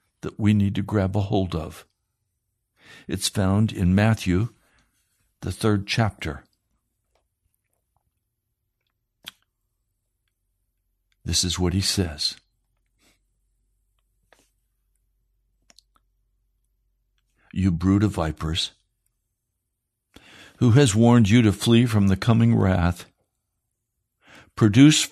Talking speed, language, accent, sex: 85 wpm, English, American, male